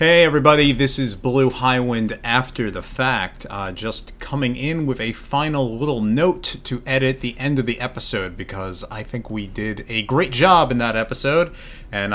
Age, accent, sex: 30-49, American, male